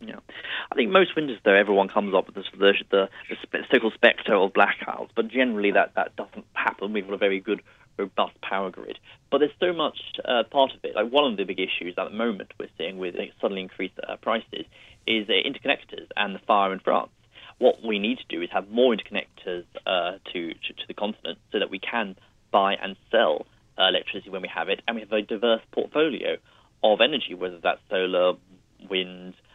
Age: 30-49